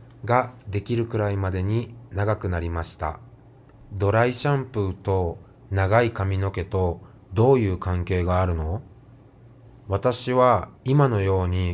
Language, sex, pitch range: Japanese, male, 95-125 Hz